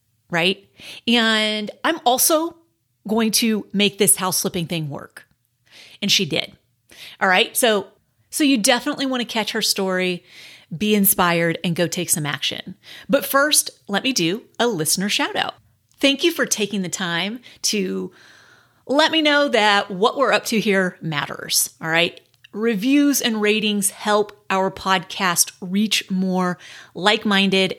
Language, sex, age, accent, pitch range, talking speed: English, female, 30-49, American, 180-235 Hz, 150 wpm